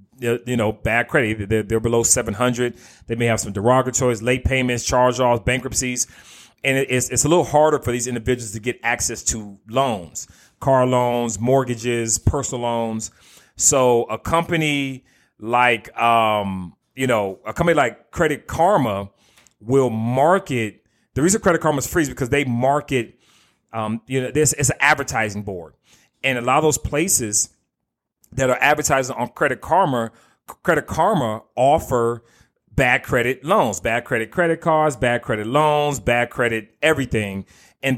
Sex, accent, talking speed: male, American, 150 wpm